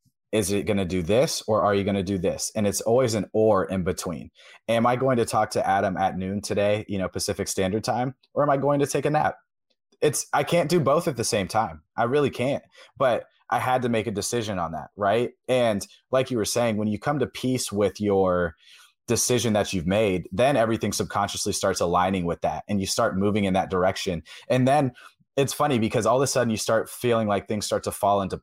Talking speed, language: 240 wpm, English